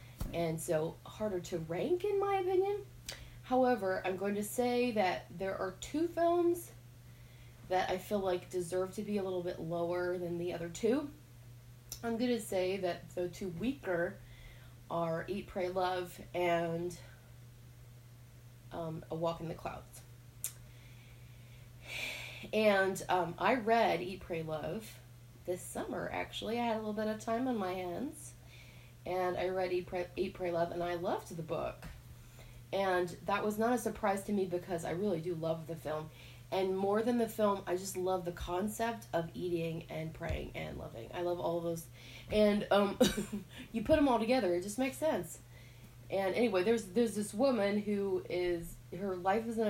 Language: English